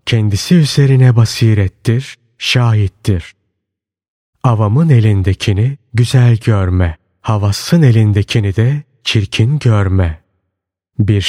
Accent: native